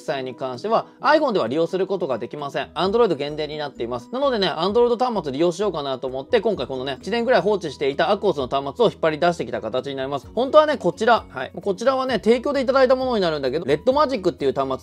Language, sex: Japanese, male